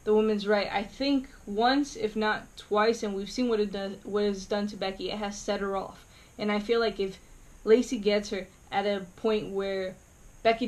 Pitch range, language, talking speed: 200-230 Hz, English, 215 wpm